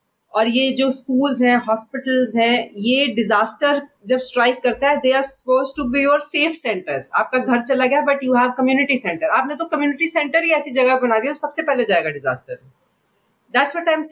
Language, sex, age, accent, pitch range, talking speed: Hindi, female, 30-49, native, 210-265 Hz, 185 wpm